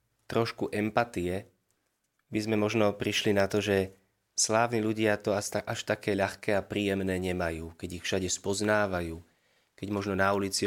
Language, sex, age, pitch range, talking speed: Slovak, male, 30-49, 100-120 Hz, 145 wpm